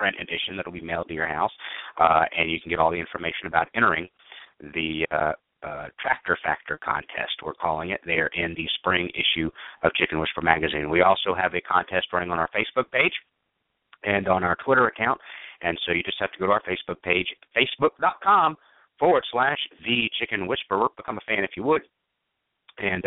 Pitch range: 85-110 Hz